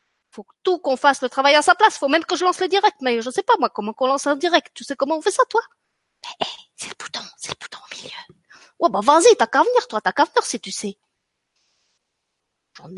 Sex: female